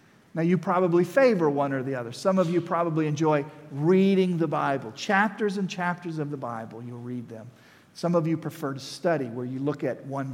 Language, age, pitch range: English, 50-69, 140-185 Hz